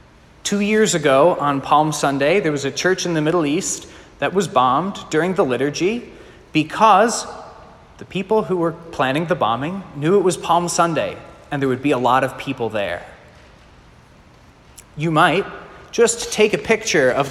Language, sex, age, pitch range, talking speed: English, male, 30-49, 135-185 Hz, 170 wpm